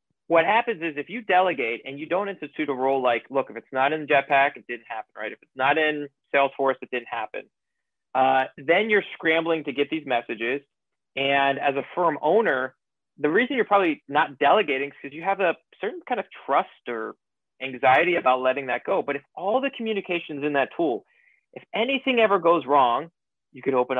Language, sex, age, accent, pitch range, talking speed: English, male, 30-49, American, 130-165 Hz, 205 wpm